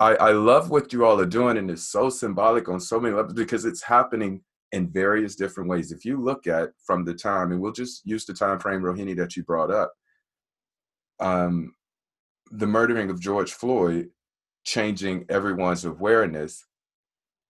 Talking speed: 170 wpm